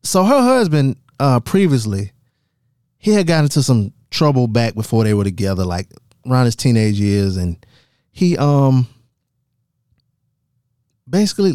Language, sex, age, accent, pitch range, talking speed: English, male, 20-39, American, 105-135 Hz, 130 wpm